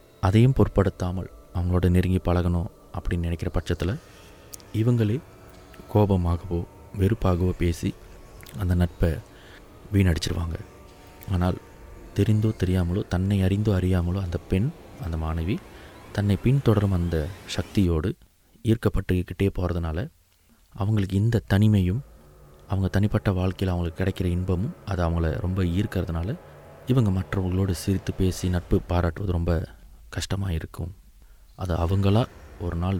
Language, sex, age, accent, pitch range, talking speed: Tamil, male, 30-49, native, 85-100 Hz, 100 wpm